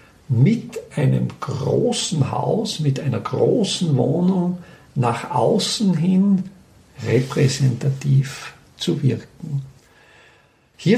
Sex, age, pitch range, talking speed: male, 50-69, 135-190 Hz, 80 wpm